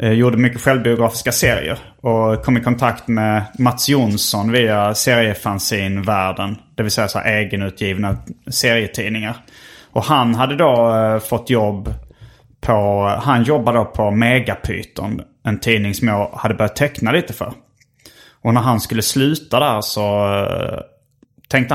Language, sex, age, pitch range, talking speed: Swedish, male, 30-49, 105-125 Hz, 140 wpm